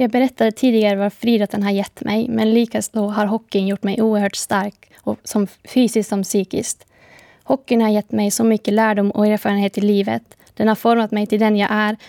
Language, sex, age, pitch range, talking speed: Swedish, female, 20-39, 200-215 Hz, 205 wpm